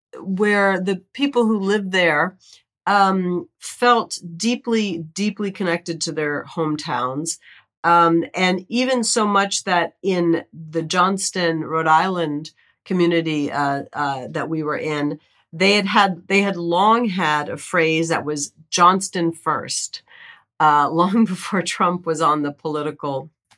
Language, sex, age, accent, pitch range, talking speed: English, female, 50-69, American, 155-185 Hz, 135 wpm